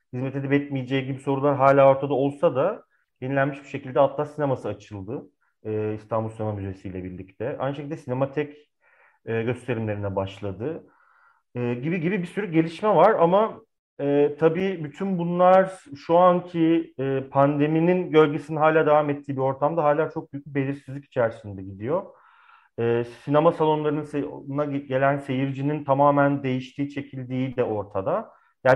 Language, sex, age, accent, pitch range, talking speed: Turkish, male, 40-59, native, 130-155 Hz, 135 wpm